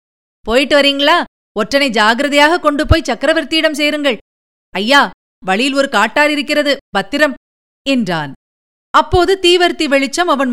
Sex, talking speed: female, 110 wpm